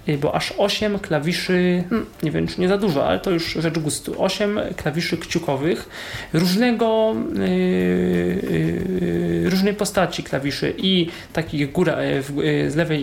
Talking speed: 135 wpm